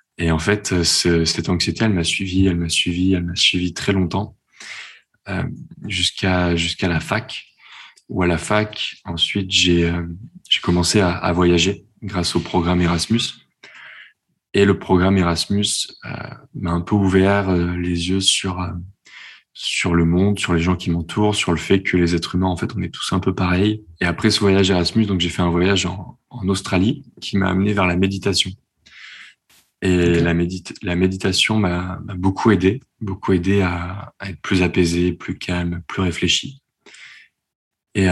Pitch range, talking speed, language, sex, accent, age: 85-100 Hz, 180 wpm, French, male, French, 20-39